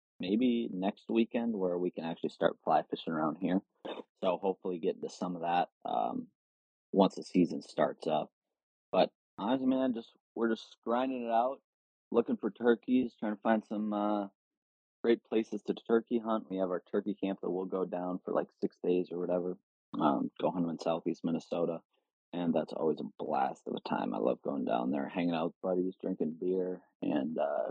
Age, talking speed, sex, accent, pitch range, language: 30-49, 195 wpm, male, American, 90-110 Hz, English